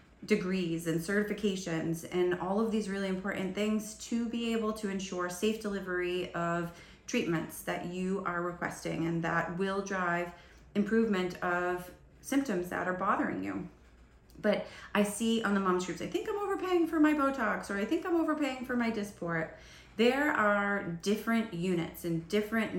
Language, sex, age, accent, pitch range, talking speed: English, female, 30-49, American, 175-210 Hz, 165 wpm